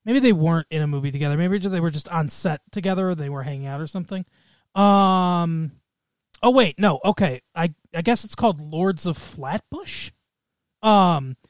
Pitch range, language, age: 155-195 Hz, English, 30-49